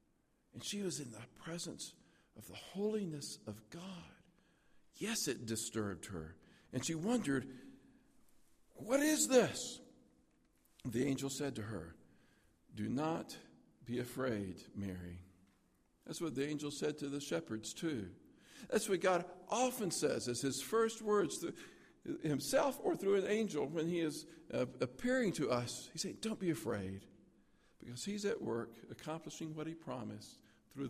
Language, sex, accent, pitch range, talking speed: English, male, American, 115-195 Hz, 145 wpm